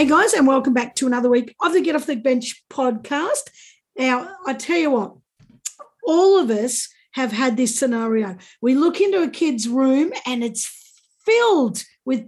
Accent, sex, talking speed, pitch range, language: Australian, female, 180 wpm, 240-290 Hz, English